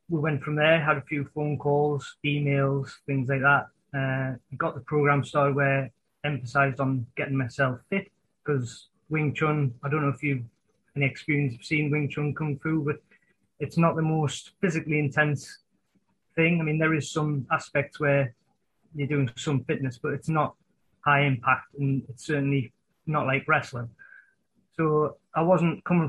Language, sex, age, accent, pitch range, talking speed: English, male, 20-39, British, 135-155 Hz, 175 wpm